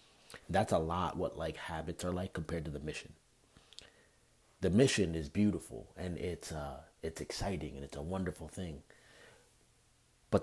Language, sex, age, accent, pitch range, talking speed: English, male, 30-49, American, 80-95 Hz, 155 wpm